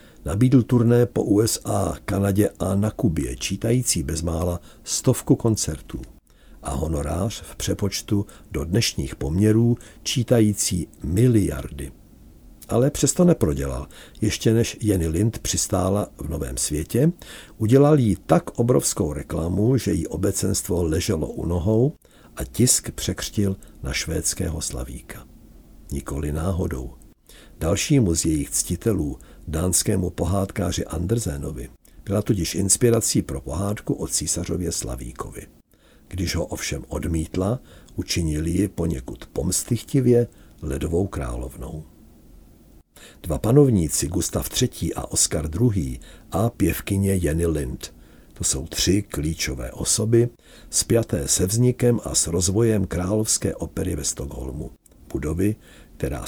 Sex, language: male, Czech